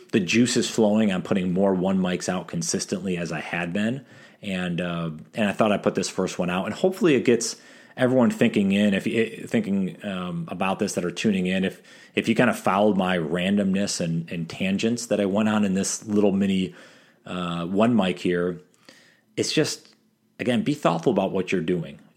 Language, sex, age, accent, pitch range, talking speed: English, male, 30-49, American, 90-115 Hz, 200 wpm